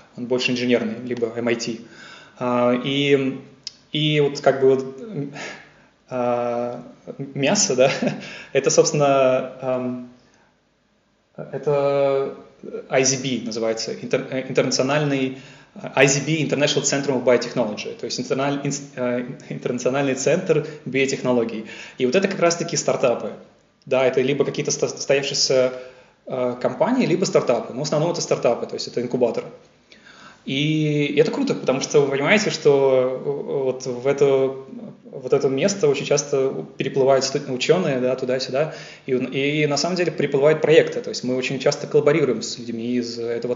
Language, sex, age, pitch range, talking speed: Russian, male, 20-39, 125-145 Hz, 125 wpm